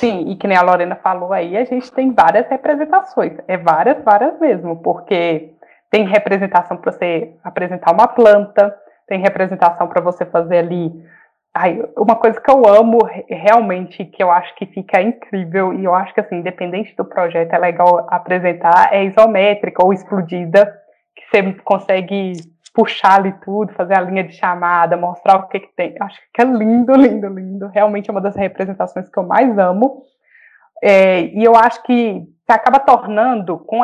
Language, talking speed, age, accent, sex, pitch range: Portuguese, 175 wpm, 20-39, Brazilian, female, 180-220 Hz